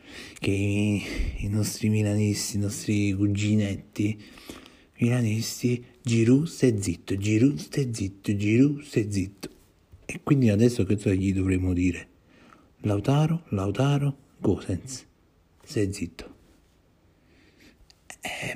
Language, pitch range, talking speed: Italian, 90-105 Hz, 105 wpm